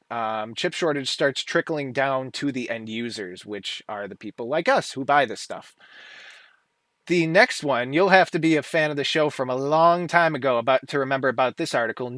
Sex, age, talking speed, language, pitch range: male, 20-39, 210 wpm, English, 135-170 Hz